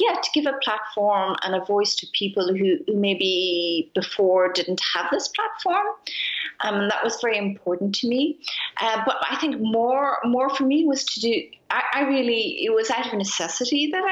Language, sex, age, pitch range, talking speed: English, female, 30-49, 185-270 Hz, 185 wpm